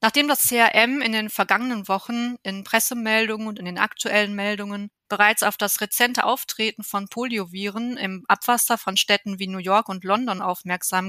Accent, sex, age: German, female, 20-39